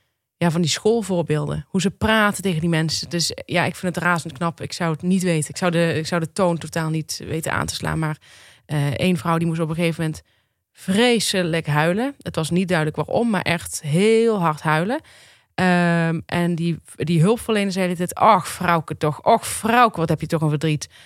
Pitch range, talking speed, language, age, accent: 165-195 Hz, 215 wpm, Dutch, 20-39, Dutch